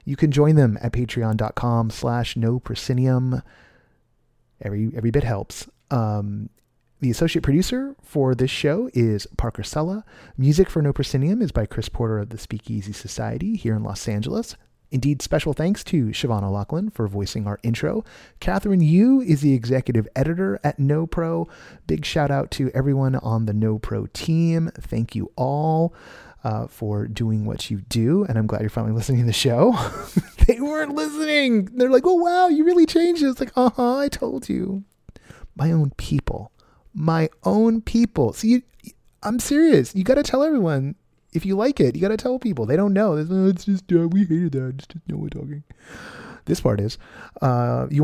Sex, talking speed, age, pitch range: male, 185 wpm, 30-49, 115-190 Hz